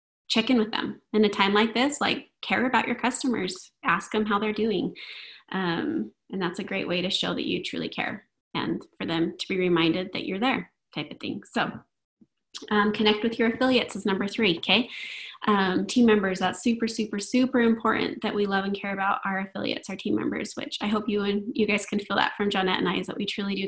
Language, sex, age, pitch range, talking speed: English, female, 20-39, 200-235 Hz, 230 wpm